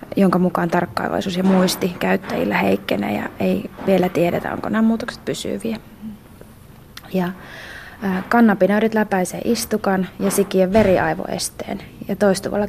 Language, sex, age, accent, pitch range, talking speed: Finnish, female, 20-39, native, 180-200 Hz, 115 wpm